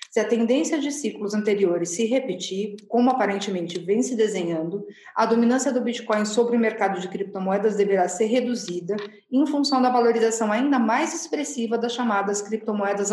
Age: 40-59